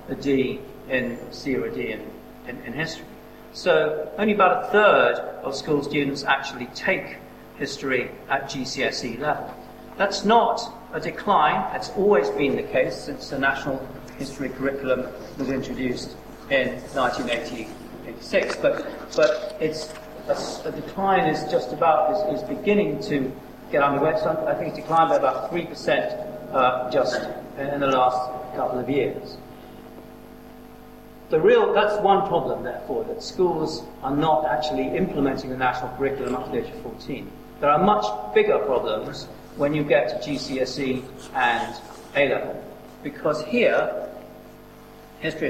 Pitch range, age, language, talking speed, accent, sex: 130-180 Hz, 50-69, English, 145 wpm, British, male